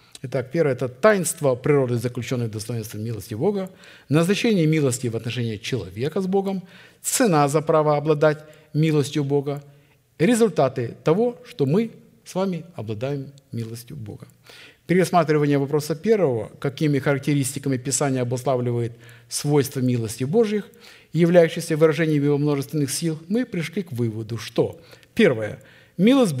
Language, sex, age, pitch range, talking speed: Russian, male, 50-69, 125-165 Hz, 125 wpm